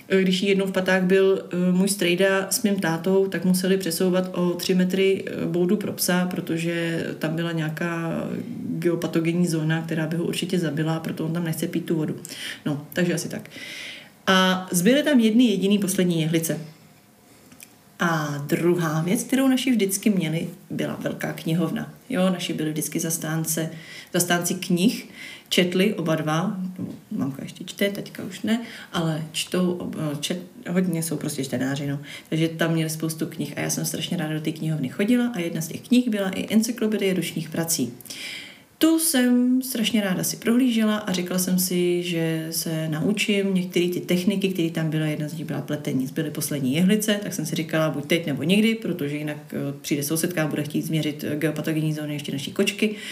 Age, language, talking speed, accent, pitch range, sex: 30-49, Czech, 175 wpm, native, 160-195 Hz, female